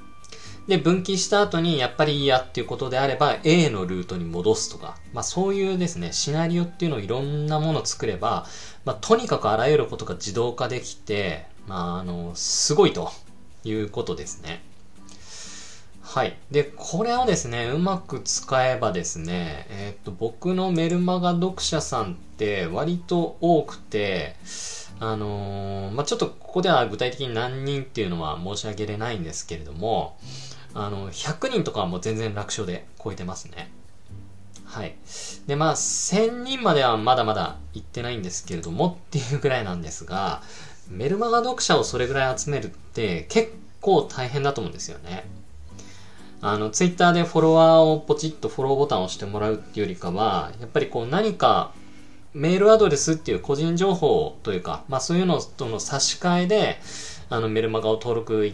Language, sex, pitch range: Japanese, male, 95-155 Hz